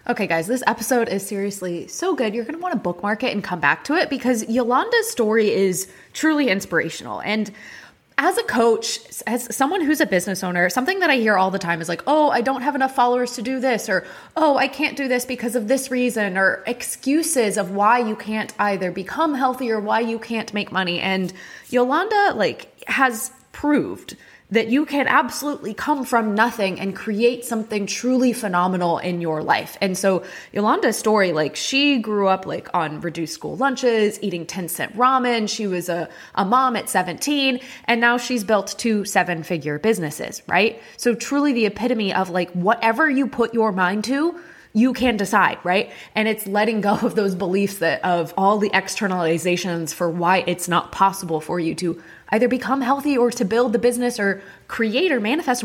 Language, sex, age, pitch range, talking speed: English, female, 20-39, 190-255 Hz, 195 wpm